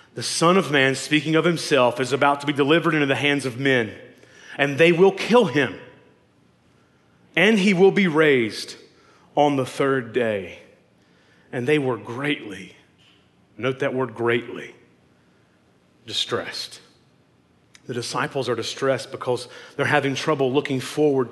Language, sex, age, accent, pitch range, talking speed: English, male, 40-59, American, 130-165 Hz, 140 wpm